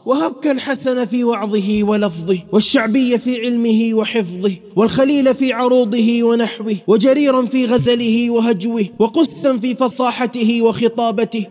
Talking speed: 110 wpm